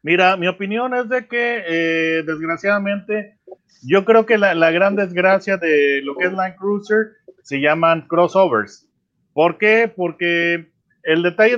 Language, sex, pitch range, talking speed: Spanish, male, 160-195 Hz, 150 wpm